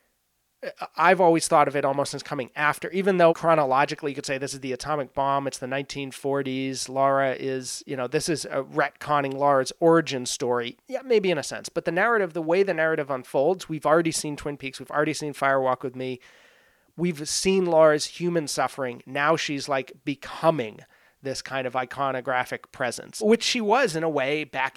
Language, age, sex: English, 30-49, male